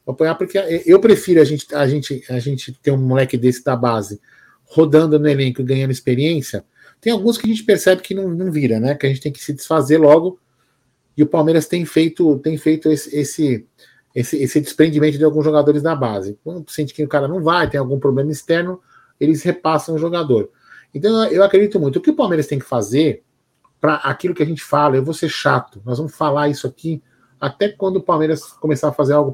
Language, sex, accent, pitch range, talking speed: Portuguese, male, Brazilian, 125-160 Hz, 205 wpm